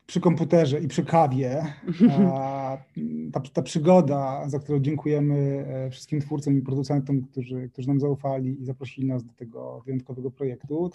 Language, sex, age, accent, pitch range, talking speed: Polish, male, 20-39, native, 135-155 Hz, 140 wpm